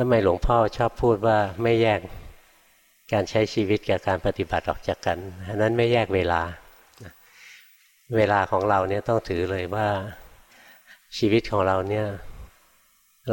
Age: 60-79